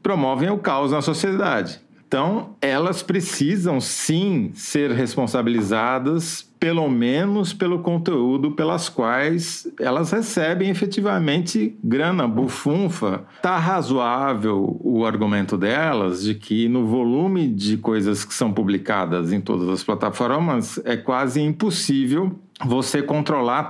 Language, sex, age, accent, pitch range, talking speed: Portuguese, male, 40-59, Brazilian, 125-185 Hz, 115 wpm